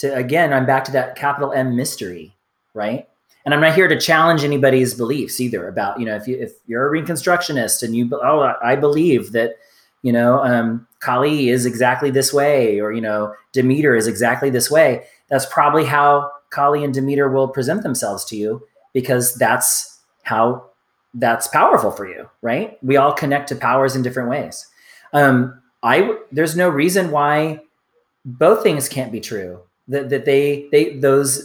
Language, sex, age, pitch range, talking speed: English, male, 30-49, 125-150 Hz, 175 wpm